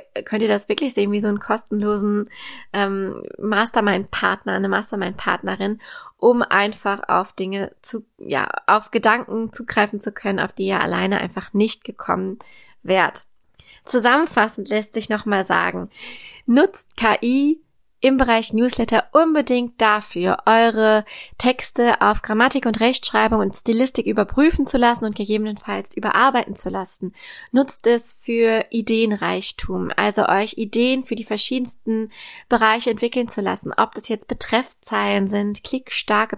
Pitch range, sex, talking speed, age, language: 205-235 Hz, female, 130 wpm, 20-39, German